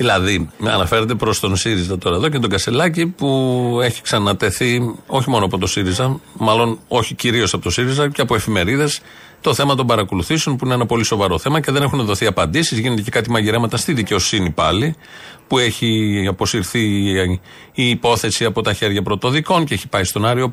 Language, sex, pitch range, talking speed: Greek, male, 105-140 Hz, 185 wpm